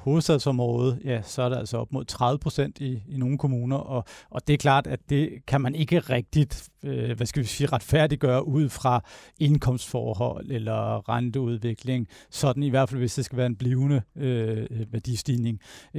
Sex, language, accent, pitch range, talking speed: male, Danish, native, 120-145 Hz, 185 wpm